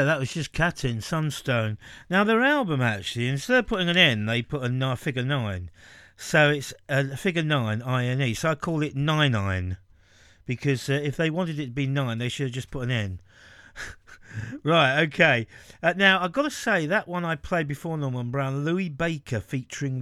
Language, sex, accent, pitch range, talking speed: English, male, British, 120-170 Hz, 205 wpm